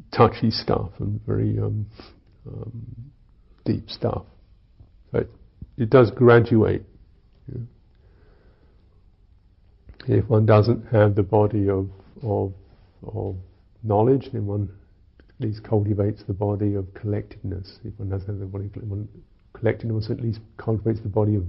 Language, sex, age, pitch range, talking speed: English, male, 50-69, 95-105 Hz, 130 wpm